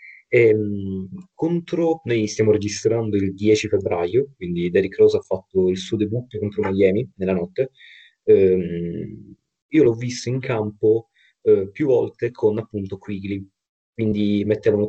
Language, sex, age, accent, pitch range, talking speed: Italian, male, 30-49, native, 100-135 Hz, 140 wpm